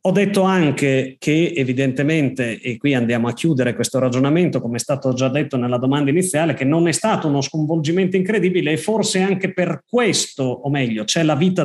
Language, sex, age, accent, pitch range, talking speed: Italian, male, 30-49, native, 130-160 Hz, 190 wpm